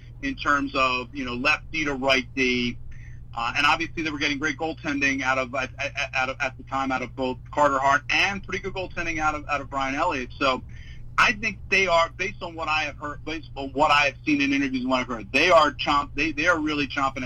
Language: English